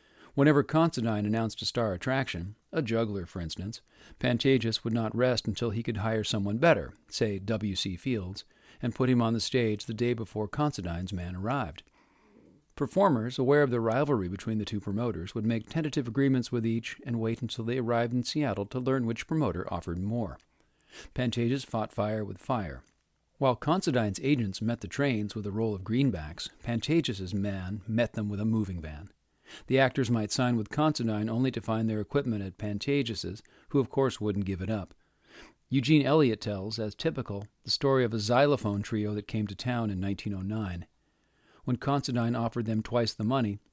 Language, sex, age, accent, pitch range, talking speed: English, male, 50-69, American, 105-130 Hz, 180 wpm